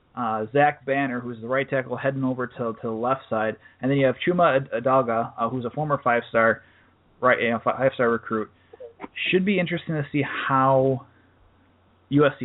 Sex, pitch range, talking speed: male, 125-155 Hz, 195 wpm